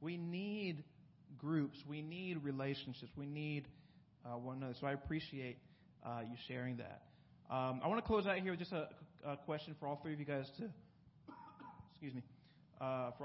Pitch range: 140-180 Hz